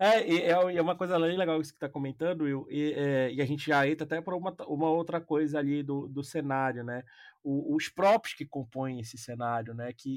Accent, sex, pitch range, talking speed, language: Brazilian, male, 135-175 Hz, 220 wpm, Portuguese